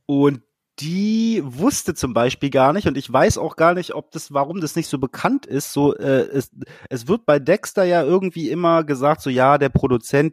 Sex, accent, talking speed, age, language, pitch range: male, German, 210 wpm, 30-49, German, 125-155 Hz